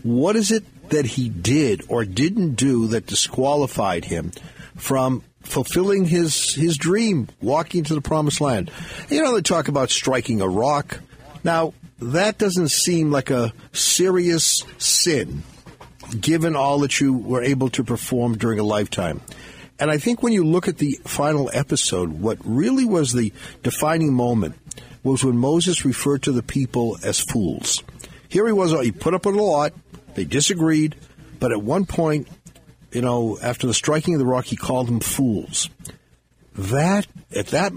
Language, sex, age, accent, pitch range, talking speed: English, male, 50-69, American, 120-160 Hz, 165 wpm